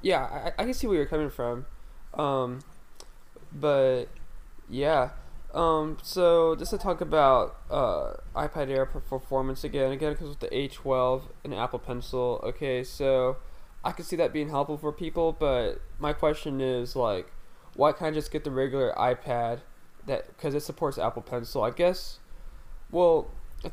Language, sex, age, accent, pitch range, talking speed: English, male, 10-29, American, 125-155 Hz, 160 wpm